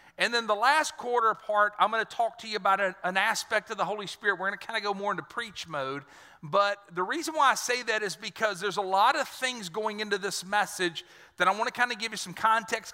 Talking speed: 265 wpm